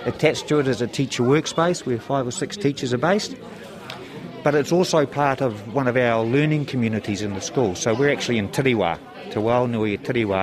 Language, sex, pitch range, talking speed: English, male, 110-140 Hz, 200 wpm